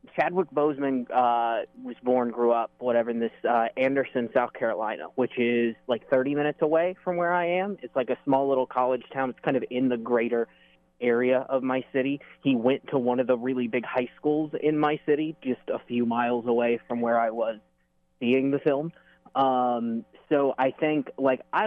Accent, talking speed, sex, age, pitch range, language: American, 200 wpm, male, 20-39, 115-140 Hz, English